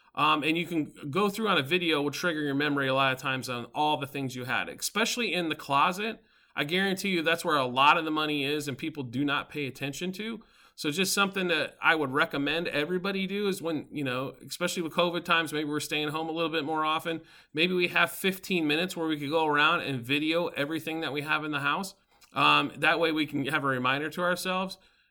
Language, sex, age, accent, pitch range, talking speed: English, male, 40-59, American, 140-175 Hz, 240 wpm